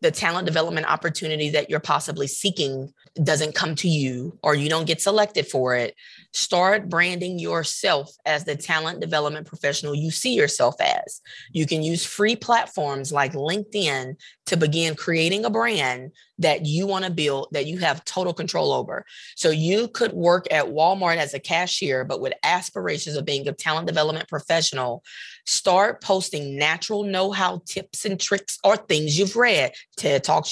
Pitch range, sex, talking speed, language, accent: 150-190 Hz, female, 165 wpm, English, American